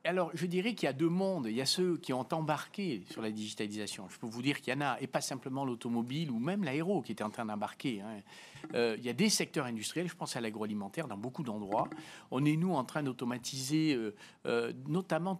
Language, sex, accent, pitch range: French, male, French, 130-190 Hz